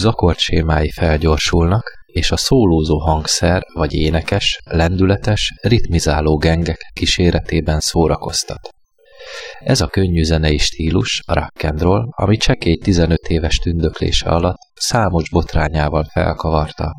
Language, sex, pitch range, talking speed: Hungarian, male, 80-95 Hz, 100 wpm